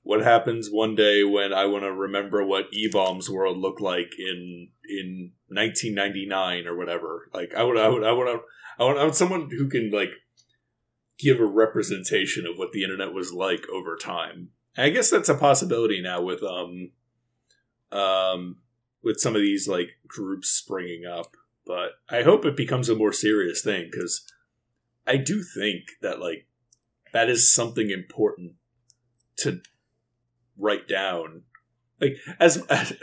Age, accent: 30-49, American